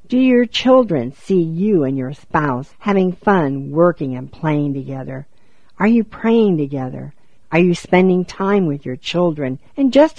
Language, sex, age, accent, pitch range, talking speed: English, female, 60-79, American, 135-190 Hz, 160 wpm